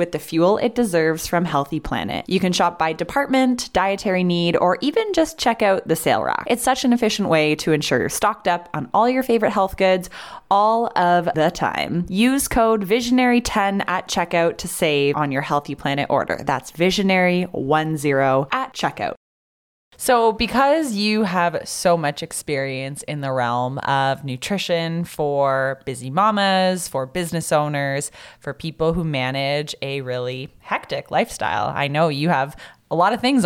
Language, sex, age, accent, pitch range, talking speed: English, female, 20-39, American, 150-200 Hz, 165 wpm